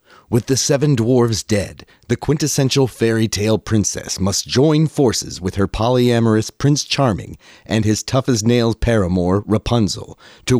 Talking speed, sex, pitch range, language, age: 135 wpm, male, 95-125 Hz, English, 30-49